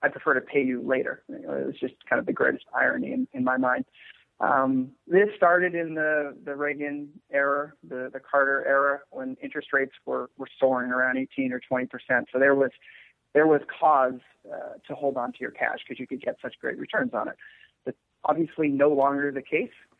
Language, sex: English, male